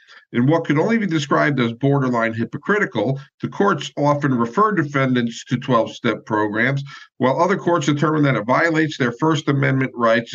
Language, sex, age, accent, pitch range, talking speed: English, male, 50-69, American, 115-160 Hz, 160 wpm